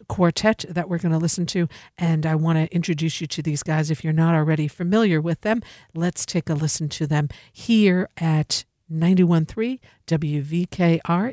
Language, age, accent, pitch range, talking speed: English, 50-69, American, 160-195 Hz, 175 wpm